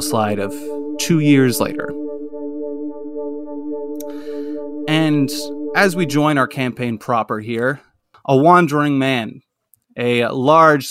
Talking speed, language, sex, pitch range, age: 100 wpm, English, male, 115-145 Hz, 30-49